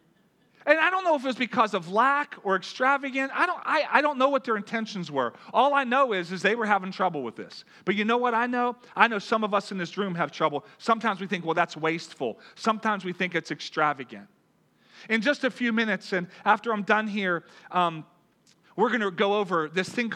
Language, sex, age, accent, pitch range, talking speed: English, male, 40-59, American, 180-235 Hz, 230 wpm